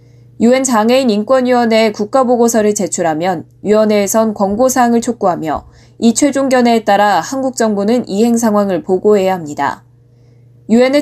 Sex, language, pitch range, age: female, Korean, 180-245 Hz, 20-39